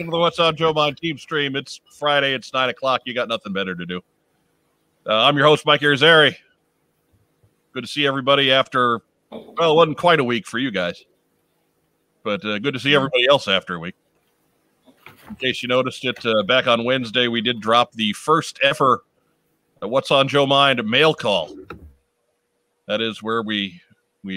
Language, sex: English, male